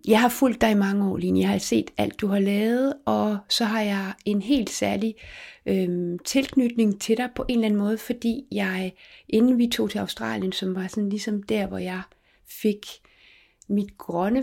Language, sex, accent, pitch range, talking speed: Danish, female, native, 190-230 Hz, 205 wpm